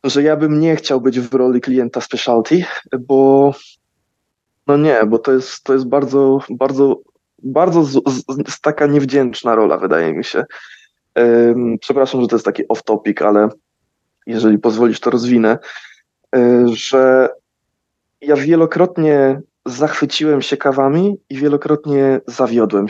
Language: Polish